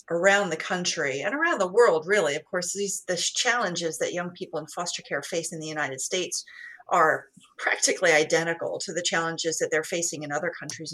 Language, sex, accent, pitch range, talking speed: English, female, American, 165-205 Hz, 200 wpm